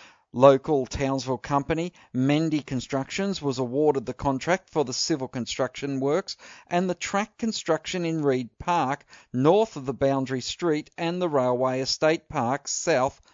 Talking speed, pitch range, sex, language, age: 145 wpm, 135-175 Hz, male, English, 50-69